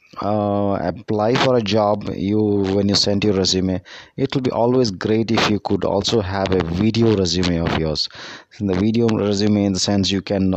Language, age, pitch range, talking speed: Malayalam, 20-39, 90-110 Hz, 200 wpm